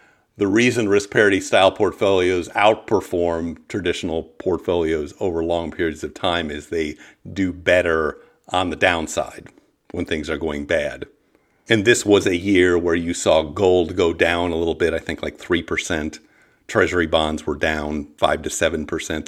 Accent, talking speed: American, 160 wpm